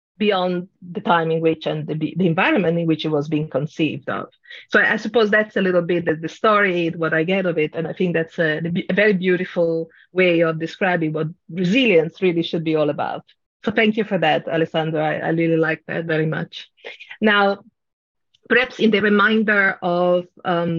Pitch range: 170-215 Hz